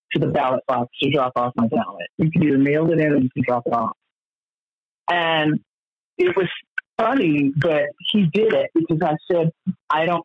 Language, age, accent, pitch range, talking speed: English, 40-59, American, 140-170 Hz, 200 wpm